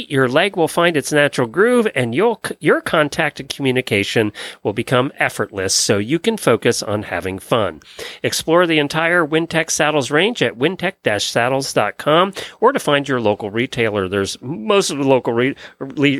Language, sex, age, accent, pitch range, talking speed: English, male, 40-59, American, 125-170 Hz, 165 wpm